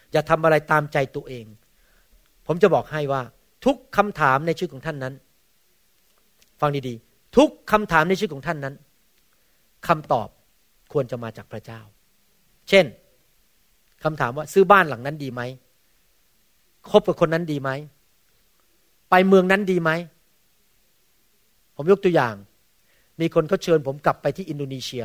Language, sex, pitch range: Thai, male, 125-170 Hz